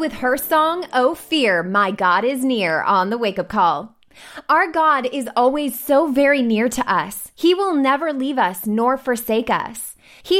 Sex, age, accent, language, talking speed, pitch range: female, 20-39, American, English, 180 wpm, 230-300 Hz